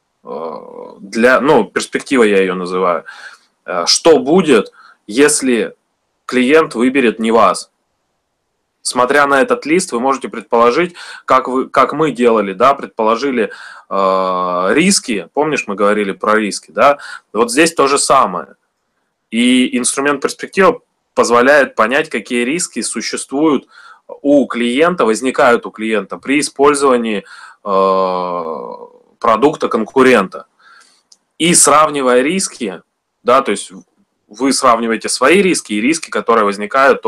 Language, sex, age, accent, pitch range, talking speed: Russian, male, 20-39, native, 110-150 Hz, 115 wpm